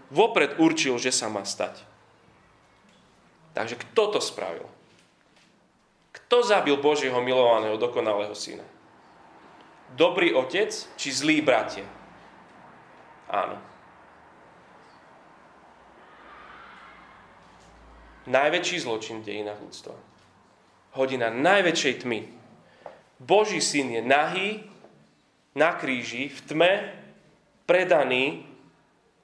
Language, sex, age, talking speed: Slovak, male, 30-49, 80 wpm